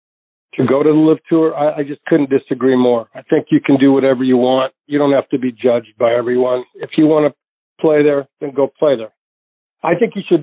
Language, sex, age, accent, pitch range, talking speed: English, male, 50-69, American, 130-155 Hz, 240 wpm